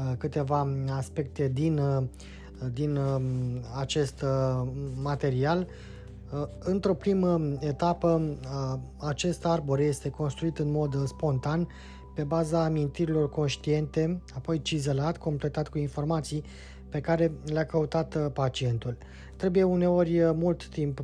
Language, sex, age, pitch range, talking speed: Romanian, male, 20-39, 130-155 Hz, 95 wpm